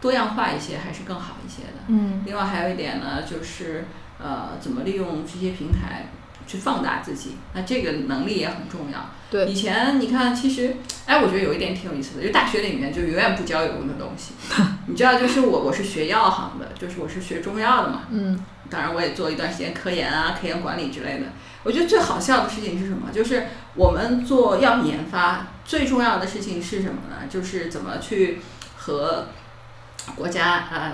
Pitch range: 180-230 Hz